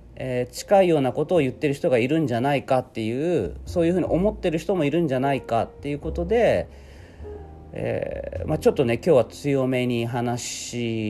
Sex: male